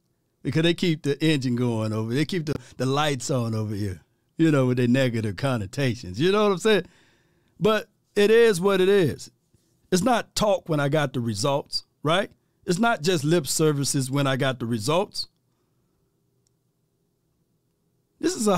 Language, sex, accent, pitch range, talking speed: English, male, American, 135-205 Hz, 175 wpm